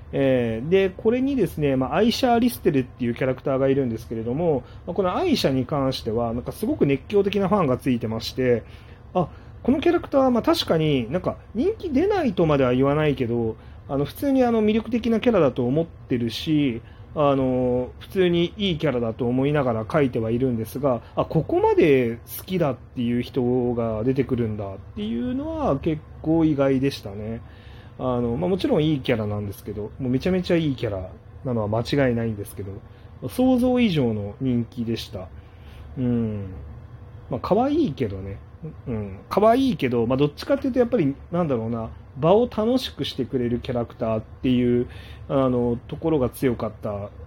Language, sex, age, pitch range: Japanese, male, 30-49, 110-160 Hz